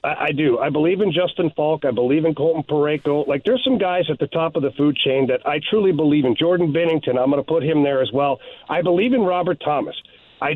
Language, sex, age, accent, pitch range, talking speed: English, male, 40-59, American, 150-195 Hz, 250 wpm